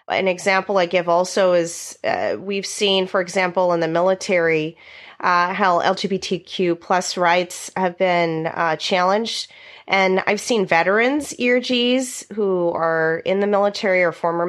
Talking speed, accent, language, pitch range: 145 wpm, American, English, 170-200 Hz